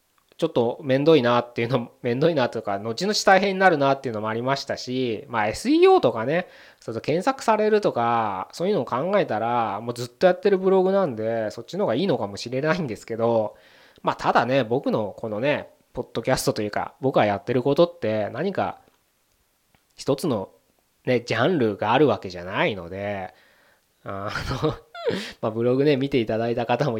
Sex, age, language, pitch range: male, 20-39, Japanese, 115-175 Hz